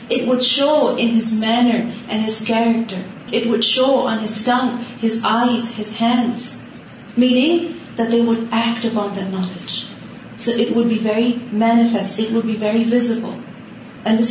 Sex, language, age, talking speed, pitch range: female, Urdu, 30-49, 170 wpm, 215-250 Hz